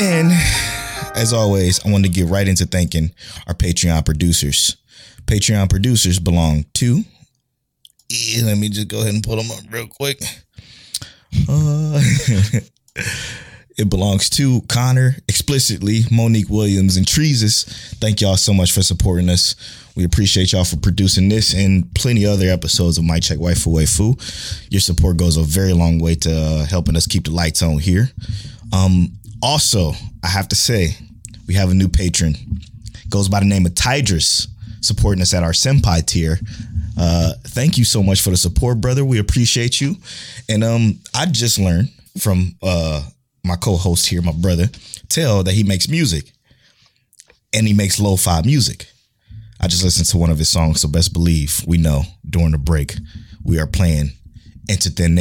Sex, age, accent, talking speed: male, 20-39, American, 165 wpm